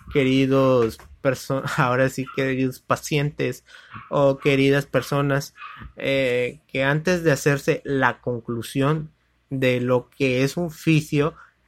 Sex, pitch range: male, 125-150 Hz